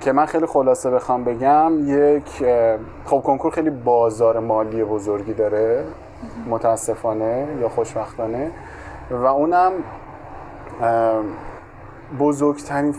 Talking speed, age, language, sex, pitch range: 90 wpm, 20-39, Persian, male, 120-145 Hz